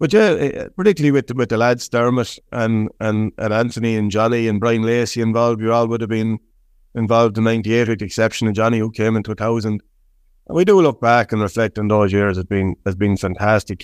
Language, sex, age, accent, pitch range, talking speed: English, male, 30-49, Irish, 100-115 Hz, 220 wpm